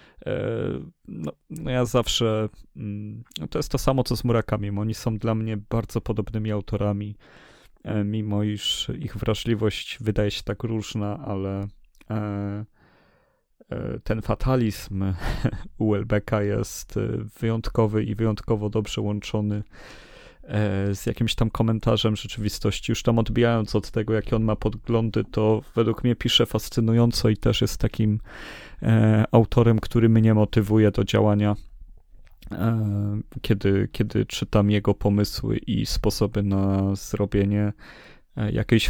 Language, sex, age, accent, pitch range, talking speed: Polish, male, 30-49, native, 105-115 Hz, 115 wpm